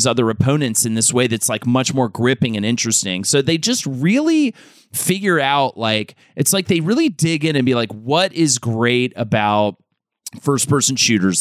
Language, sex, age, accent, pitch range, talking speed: English, male, 30-49, American, 115-140 Hz, 185 wpm